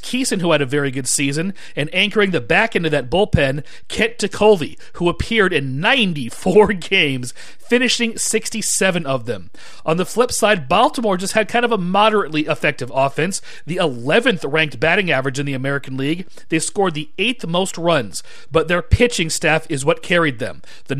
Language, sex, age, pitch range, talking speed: English, male, 40-59, 155-205 Hz, 180 wpm